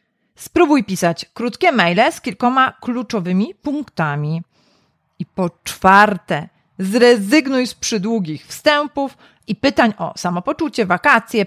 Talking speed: 105 wpm